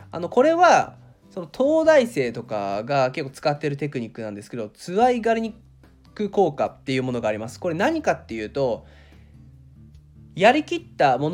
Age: 20-39